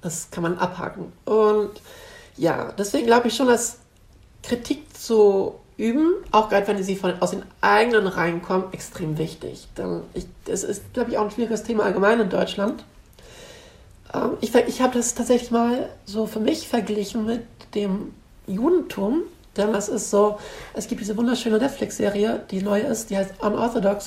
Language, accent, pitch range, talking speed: German, German, 190-225 Hz, 160 wpm